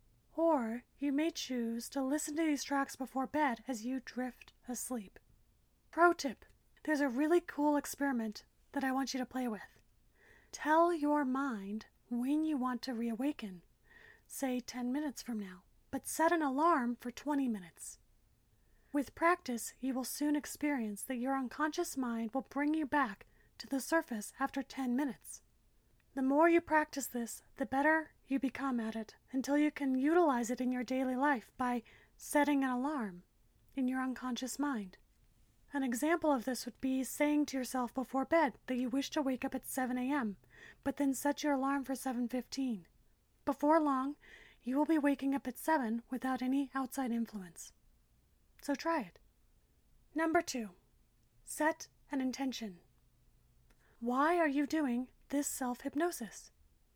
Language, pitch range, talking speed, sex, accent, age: English, 240-290 Hz, 160 wpm, female, American, 30-49